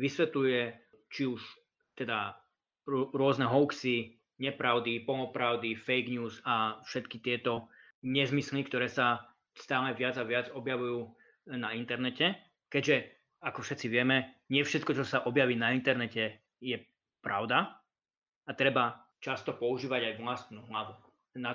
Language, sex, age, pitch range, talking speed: Slovak, male, 20-39, 115-135 Hz, 125 wpm